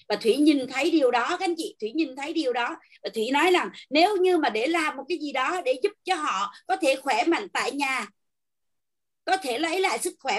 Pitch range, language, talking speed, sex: 260-370 Hz, Vietnamese, 250 wpm, female